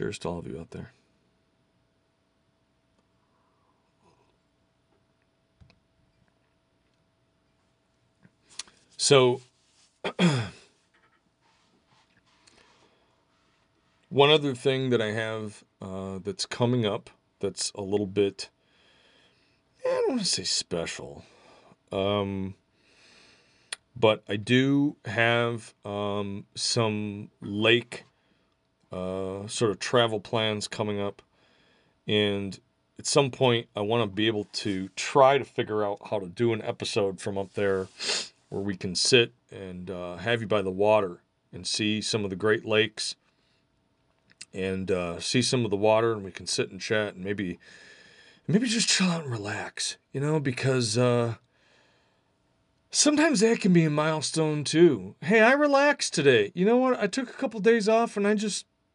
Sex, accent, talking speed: male, American, 135 wpm